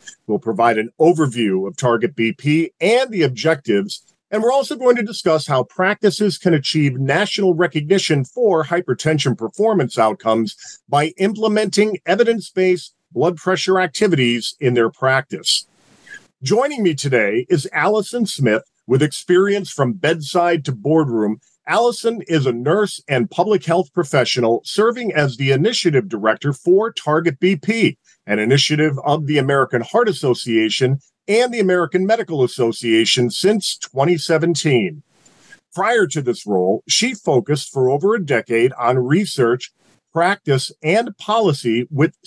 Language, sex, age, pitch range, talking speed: English, male, 40-59, 135-185 Hz, 130 wpm